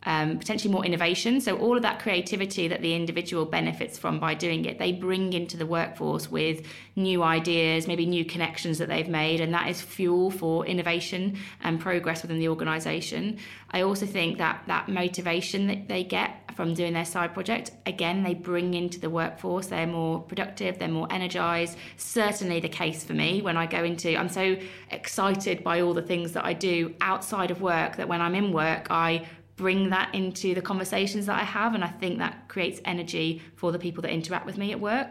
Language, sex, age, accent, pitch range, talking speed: English, female, 20-39, British, 170-200 Hz, 205 wpm